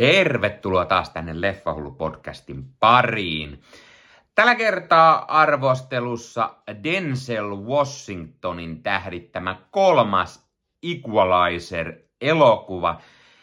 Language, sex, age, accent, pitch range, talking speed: Finnish, male, 30-49, native, 90-140 Hz, 65 wpm